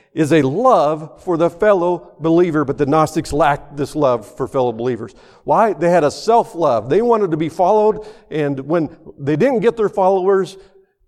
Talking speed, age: 180 wpm, 50-69